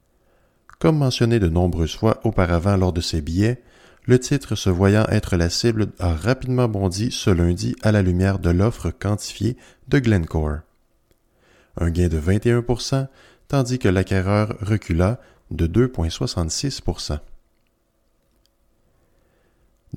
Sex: male